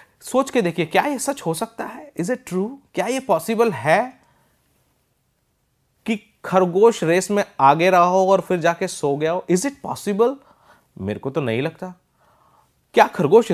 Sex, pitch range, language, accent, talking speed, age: male, 145-210 Hz, Hindi, native, 170 wpm, 30-49